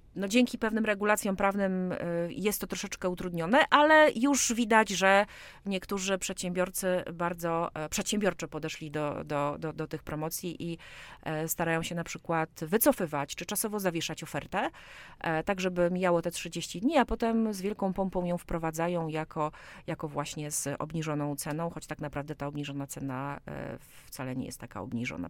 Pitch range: 155-185 Hz